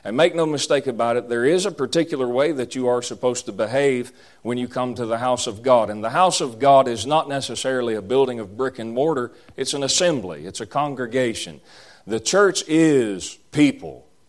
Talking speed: 205 wpm